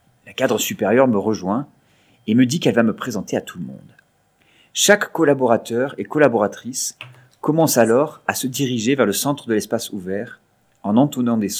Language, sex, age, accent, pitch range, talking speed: French, male, 30-49, French, 110-150 Hz, 170 wpm